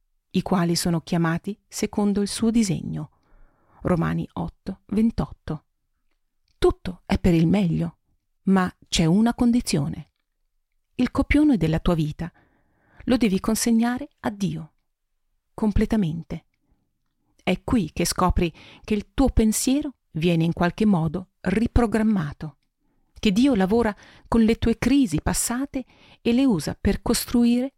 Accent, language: native, Italian